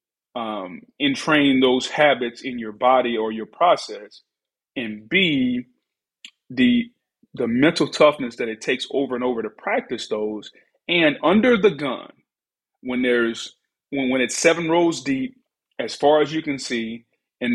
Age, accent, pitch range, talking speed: 30-49, American, 120-155 Hz, 150 wpm